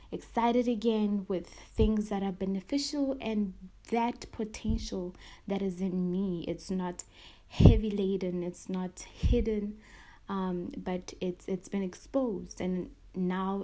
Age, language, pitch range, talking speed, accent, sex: 20-39, English, 185-215 Hz, 130 wpm, South African, female